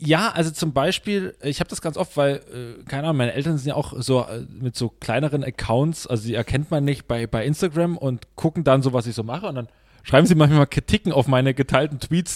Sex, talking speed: male, 235 wpm